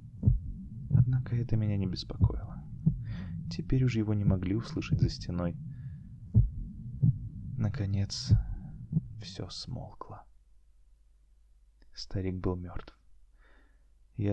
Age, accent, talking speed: 20-39, native, 80 wpm